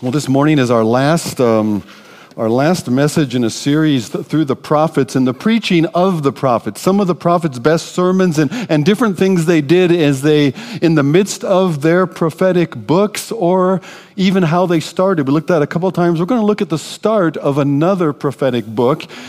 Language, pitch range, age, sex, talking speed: English, 130-180 Hz, 50-69, male, 205 wpm